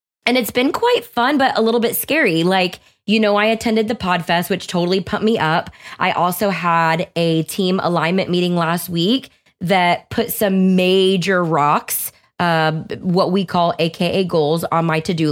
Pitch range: 165-220 Hz